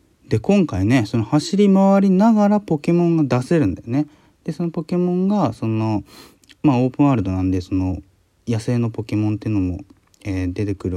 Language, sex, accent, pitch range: Japanese, male, native, 95-155 Hz